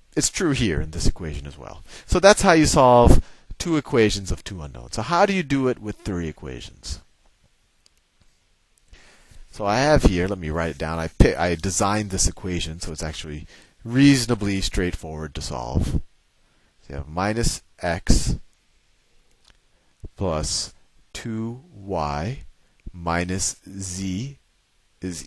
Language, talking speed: English, 140 wpm